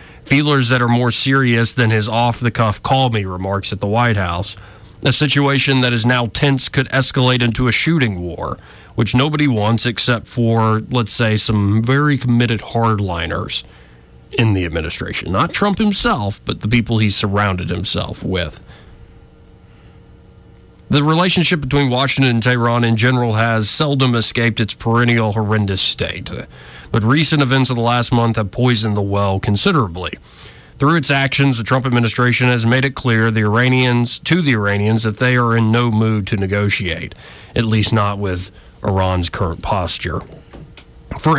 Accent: American